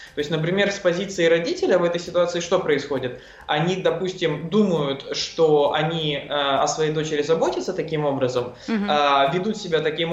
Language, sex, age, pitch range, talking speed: Russian, male, 20-39, 145-185 Hz, 160 wpm